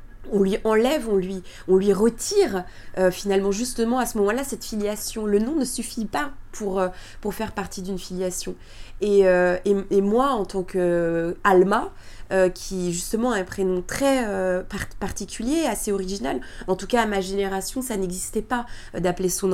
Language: French